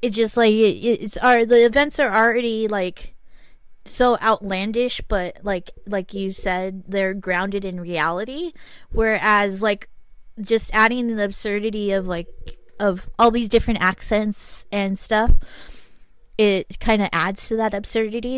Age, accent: 20-39, American